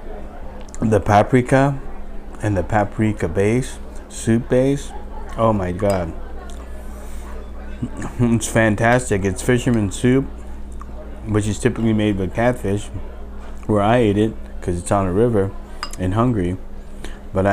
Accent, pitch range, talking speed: American, 70-110 Hz, 115 wpm